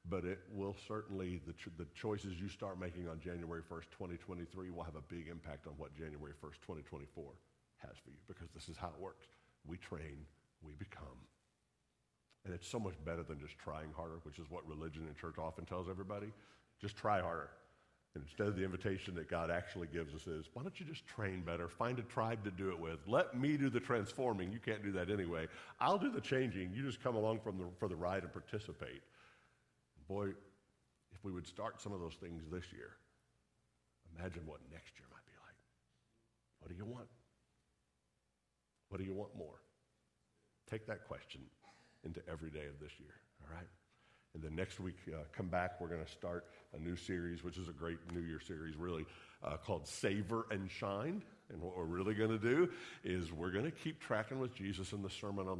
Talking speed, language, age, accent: 205 wpm, English, 50-69, American